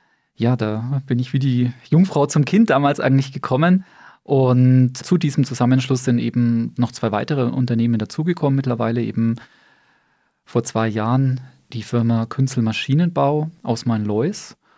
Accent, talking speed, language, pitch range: German, 140 wpm, German, 120-140 Hz